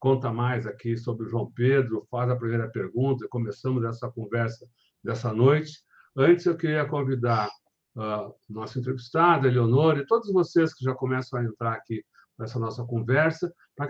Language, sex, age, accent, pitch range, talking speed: Portuguese, male, 60-79, Brazilian, 125-150 Hz, 165 wpm